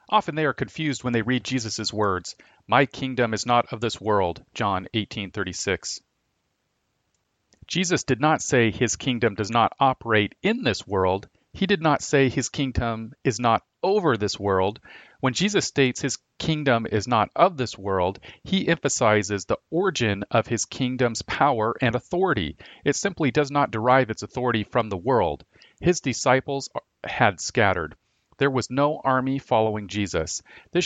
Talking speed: 160 wpm